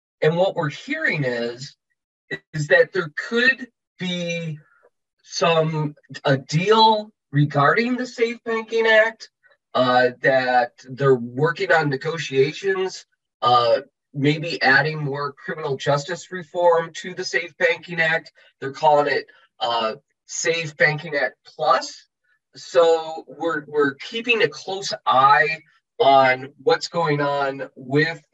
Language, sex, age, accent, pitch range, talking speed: English, male, 20-39, American, 140-195 Hz, 120 wpm